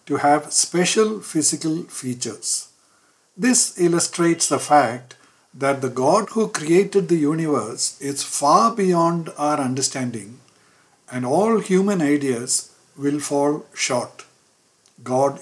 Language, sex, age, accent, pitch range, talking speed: English, male, 60-79, Indian, 135-170 Hz, 110 wpm